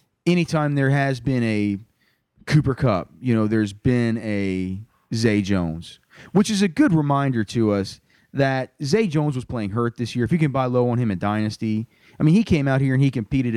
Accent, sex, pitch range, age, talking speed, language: American, male, 115-145 Hz, 30-49, 210 wpm, English